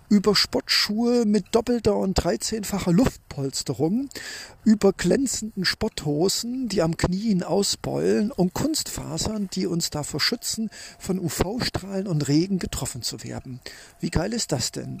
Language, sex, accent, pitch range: German, male, German, 145-210 Hz